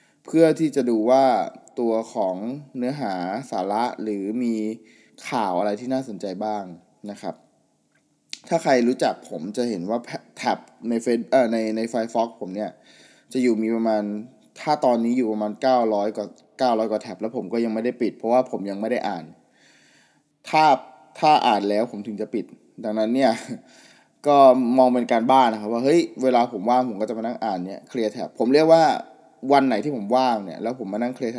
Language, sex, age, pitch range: Thai, male, 20-39, 110-135 Hz